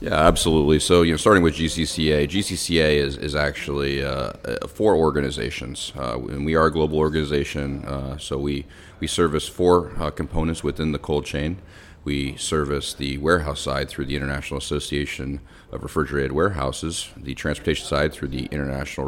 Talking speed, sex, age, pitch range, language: 165 wpm, male, 30-49, 70-80 Hz, English